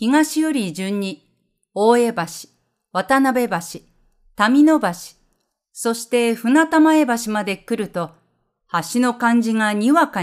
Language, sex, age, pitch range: Japanese, female, 40-59, 195-270 Hz